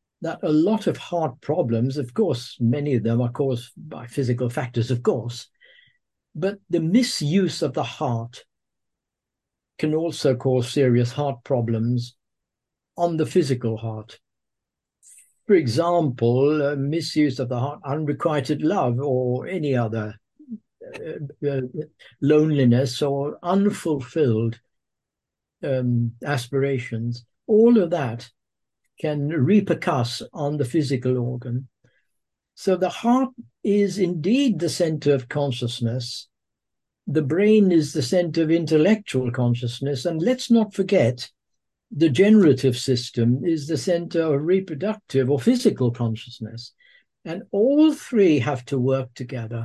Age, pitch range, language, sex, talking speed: 60-79, 120-170 Hz, English, male, 120 wpm